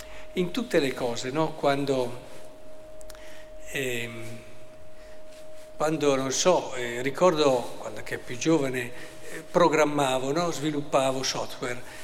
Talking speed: 105 wpm